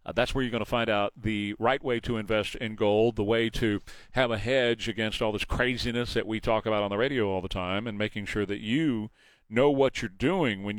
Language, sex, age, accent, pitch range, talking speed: English, male, 40-59, American, 105-130 Hz, 250 wpm